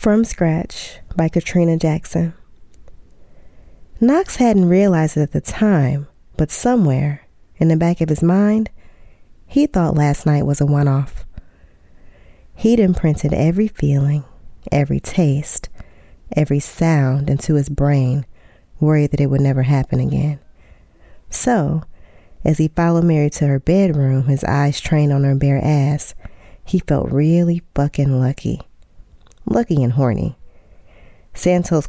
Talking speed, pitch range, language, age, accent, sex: 130 wpm, 135-165 Hz, English, 20-39, American, female